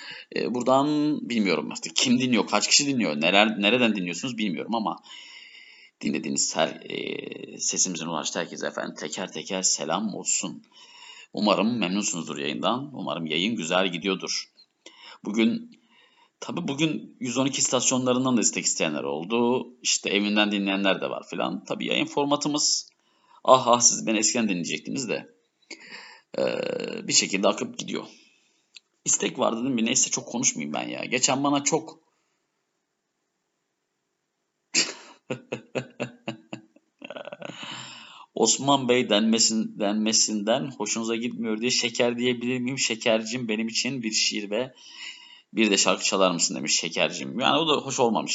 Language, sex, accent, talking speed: Turkish, male, native, 125 wpm